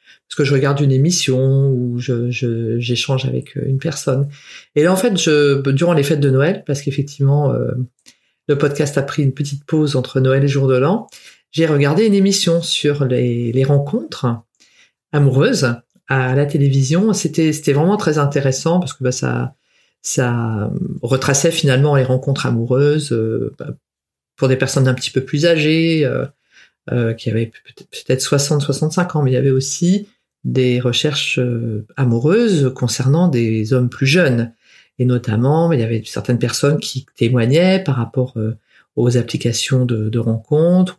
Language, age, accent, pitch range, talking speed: French, 40-59, French, 125-155 Hz, 165 wpm